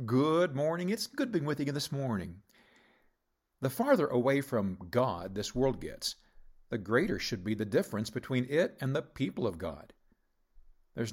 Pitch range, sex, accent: 105-140 Hz, male, American